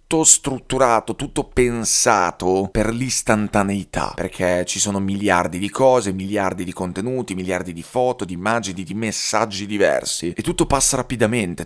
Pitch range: 90-115 Hz